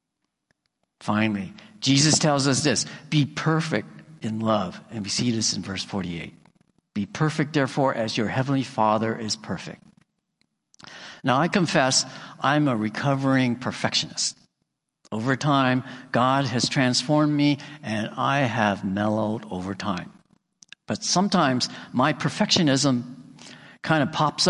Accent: American